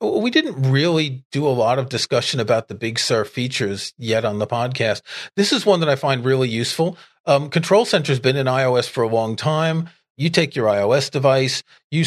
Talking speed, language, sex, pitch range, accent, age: 210 wpm, English, male, 125-165 Hz, American, 40-59